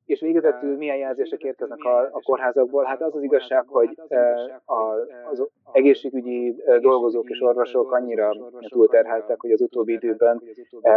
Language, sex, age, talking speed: Hungarian, male, 20-39, 135 wpm